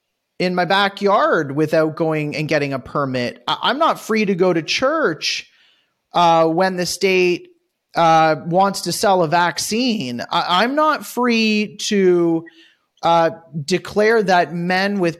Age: 30-49